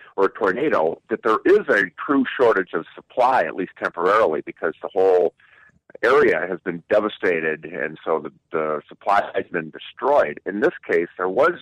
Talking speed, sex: 175 wpm, male